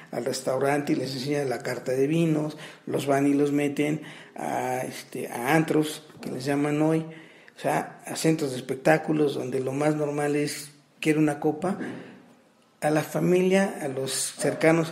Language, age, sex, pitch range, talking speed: Spanish, 50-69, male, 140-165 Hz, 170 wpm